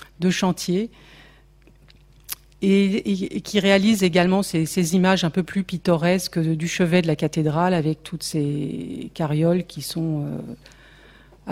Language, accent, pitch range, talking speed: French, French, 160-185 Hz, 140 wpm